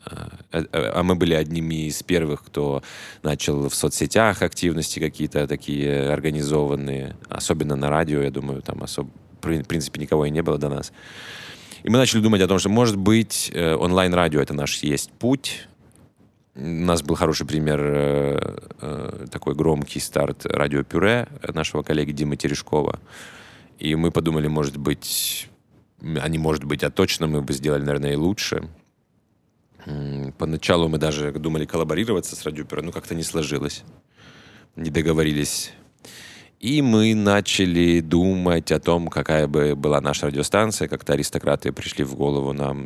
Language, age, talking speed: Ukrainian, 20-39, 145 wpm